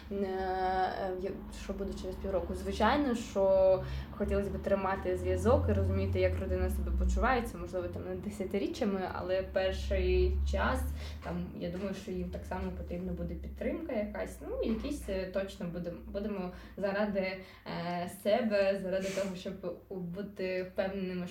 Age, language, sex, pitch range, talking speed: 20-39, Ukrainian, female, 175-200 Hz, 130 wpm